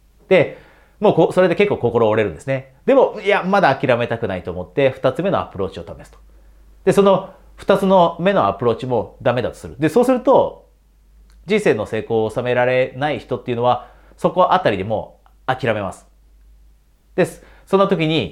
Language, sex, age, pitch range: Japanese, male, 30-49, 105-175 Hz